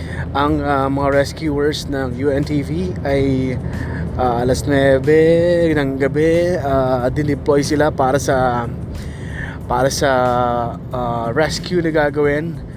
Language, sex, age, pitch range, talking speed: Filipino, male, 20-39, 135-155 Hz, 110 wpm